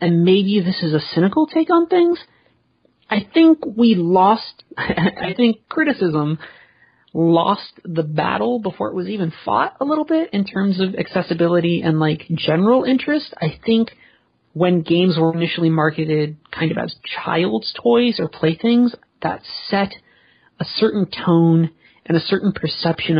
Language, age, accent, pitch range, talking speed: English, 30-49, American, 160-210 Hz, 150 wpm